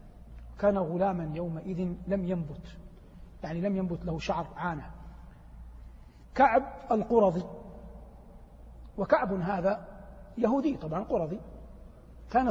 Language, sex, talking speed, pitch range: Arabic, male, 90 wpm, 140-225 Hz